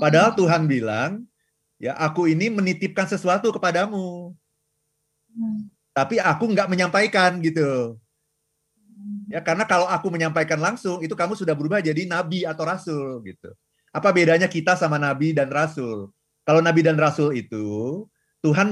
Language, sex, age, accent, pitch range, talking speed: Indonesian, male, 30-49, native, 150-195 Hz, 135 wpm